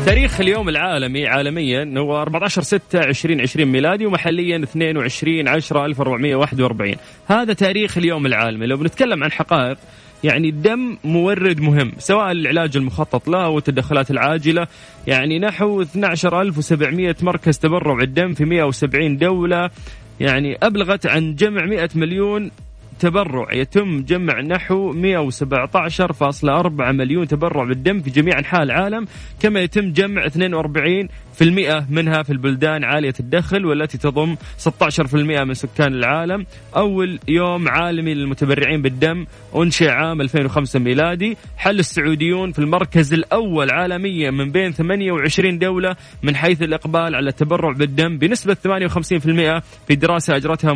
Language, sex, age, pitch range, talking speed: Arabic, male, 20-39, 145-180 Hz, 120 wpm